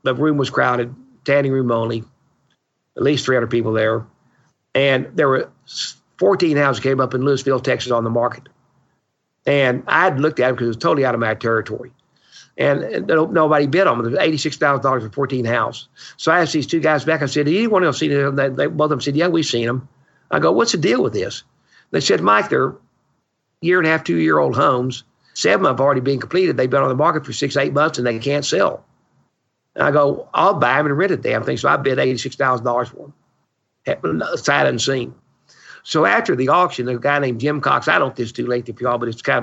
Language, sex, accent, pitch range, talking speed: English, male, American, 125-145 Hz, 225 wpm